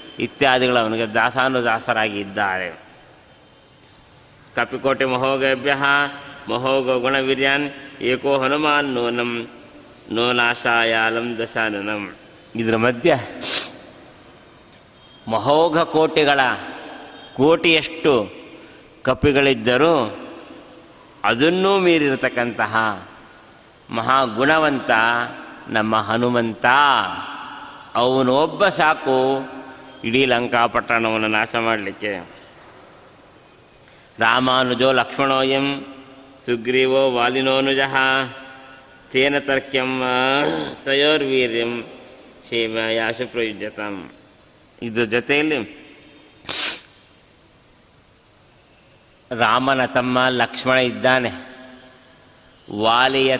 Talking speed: 50 wpm